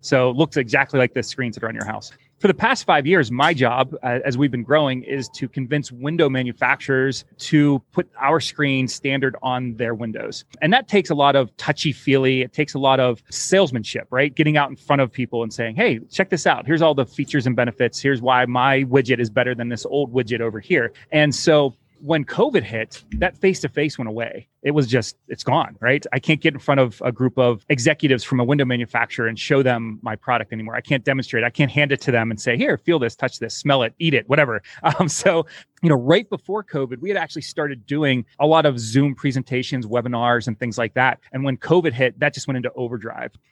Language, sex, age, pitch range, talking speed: English, male, 30-49, 125-150 Hz, 230 wpm